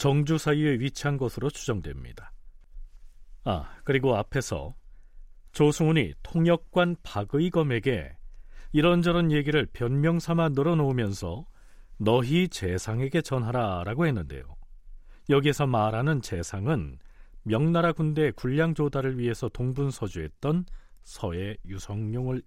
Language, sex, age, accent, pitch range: Korean, male, 40-59, native, 95-150 Hz